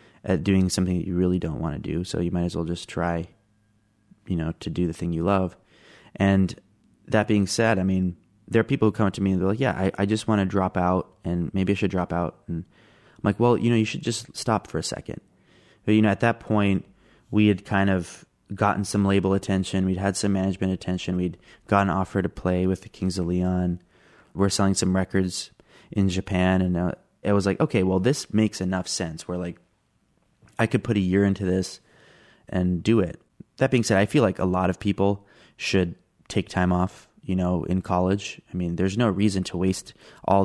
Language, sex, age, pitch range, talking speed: English, male, 20-39, 90-100 Hz, 225 wpm